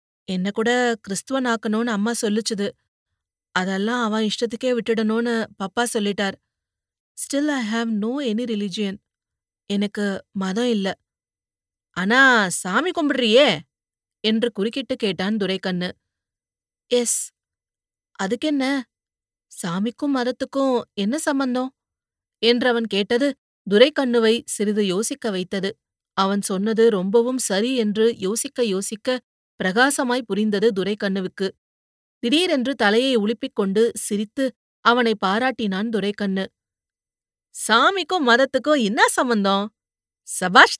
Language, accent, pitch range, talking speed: Tamil, native, 200-245 Hz, 95 wpm